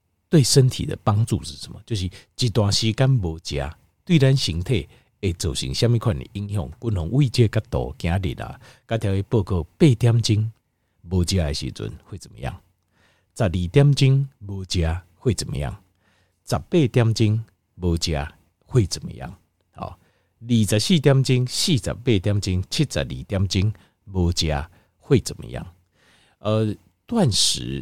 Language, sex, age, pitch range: Chinese, male, 50-69, 85-120 Hz